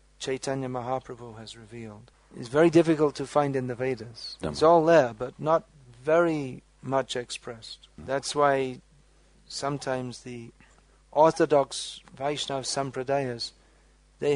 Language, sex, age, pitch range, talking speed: English, male, 40-59, 130-155 Hz, 115 wpm